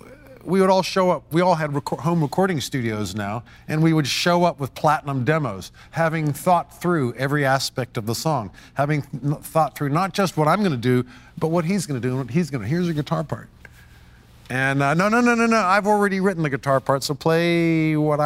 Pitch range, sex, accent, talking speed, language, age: 125-170 Hz, male, American, 230 wpm, English, 50-69